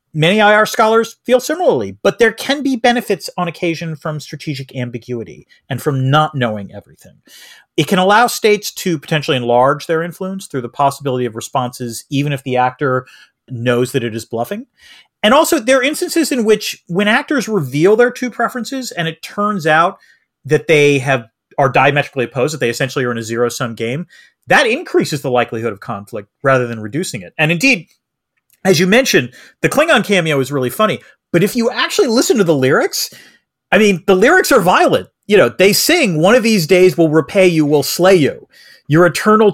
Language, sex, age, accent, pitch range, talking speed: English, male, 40-59, American, 135-215 Hz, 190 wpm